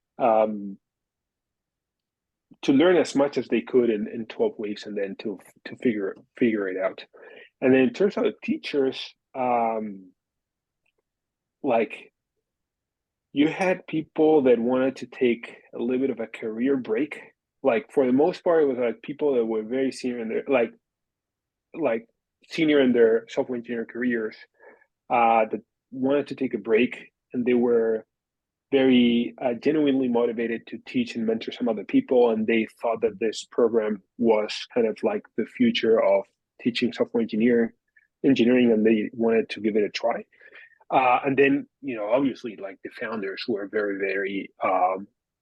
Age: 30-49